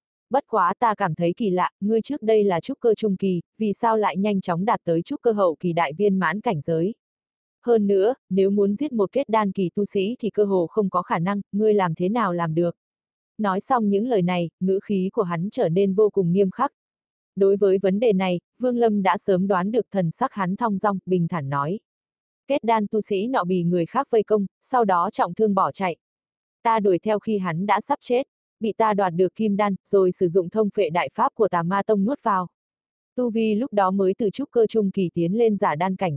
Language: Vietnamese